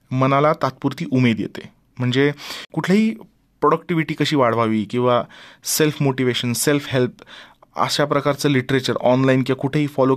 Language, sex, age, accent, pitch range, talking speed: Marathi, male, 30-49, native, 120-160 Hz, 125 wpm